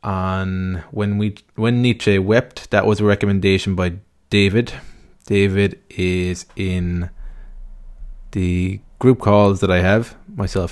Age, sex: 20-39, male